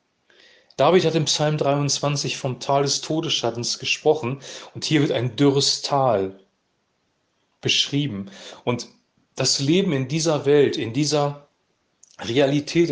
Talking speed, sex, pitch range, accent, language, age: 120 wpm, male, 125-150 Hz, German, German, 40-59